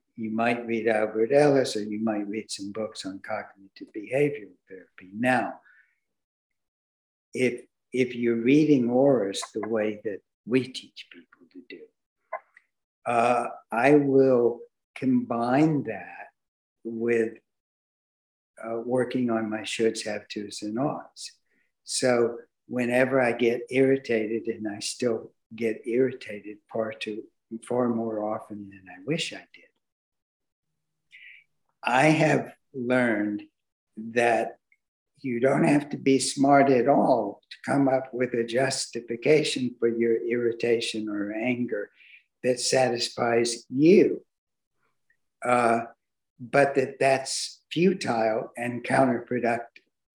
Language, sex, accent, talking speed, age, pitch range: English, male, American, 115 wpm, 60-79, 115-130 Hz